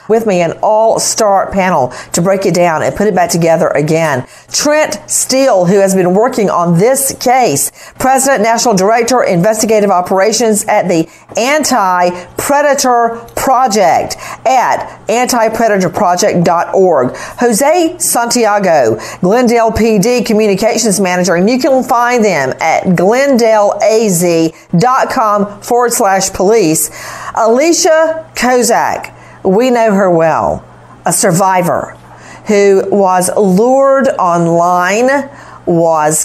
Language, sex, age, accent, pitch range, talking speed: English, female, 50-69, American, 185-260 Hz, 105 wpm